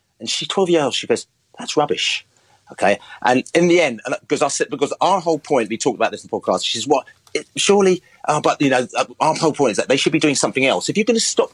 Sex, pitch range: male, 120-165 Hz